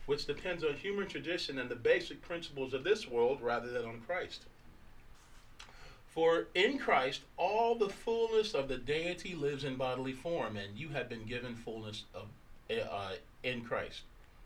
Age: 40-59